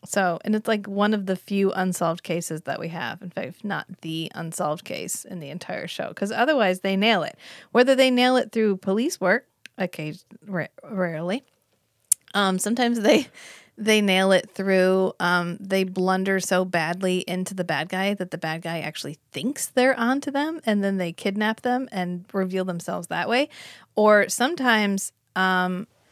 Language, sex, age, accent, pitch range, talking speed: English, female, 30-49, American, 175-215 Hz, 170 wpm